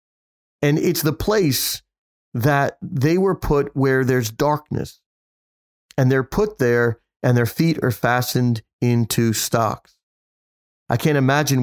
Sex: male